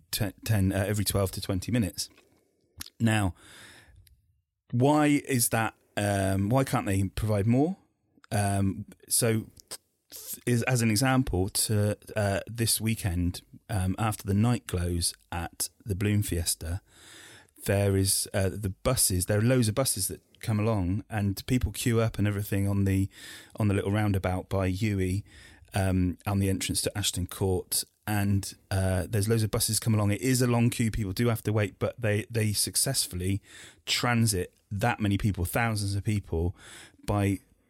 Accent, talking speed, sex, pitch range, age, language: British, 160 wpm, male, 95-110 Hz, 30-49, English